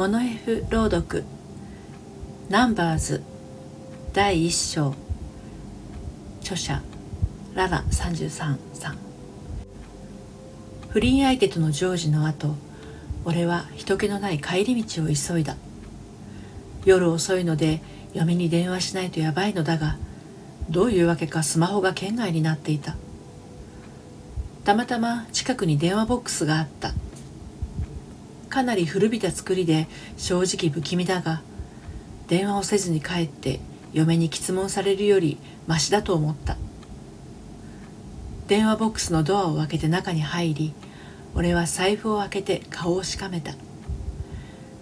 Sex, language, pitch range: female, Japanese, 155-195 Hz